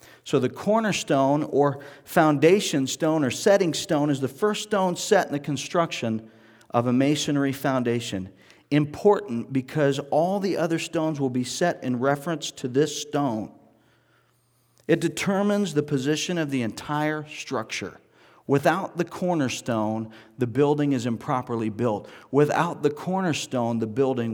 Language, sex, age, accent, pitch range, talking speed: English, male, 40-59, American, 120-155 Hz, 140 wpm